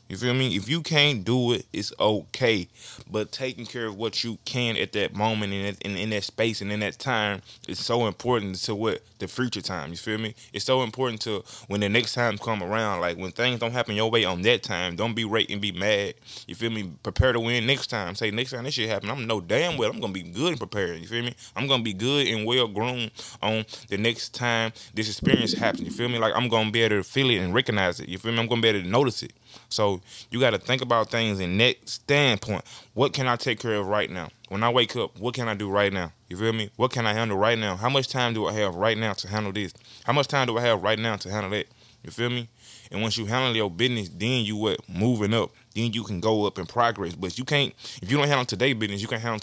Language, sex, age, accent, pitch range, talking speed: English, male, 20-39, American, 105-125 Hz, 270 wpm